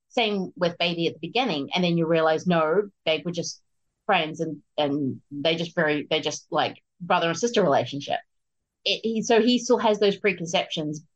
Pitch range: 165-210 Hz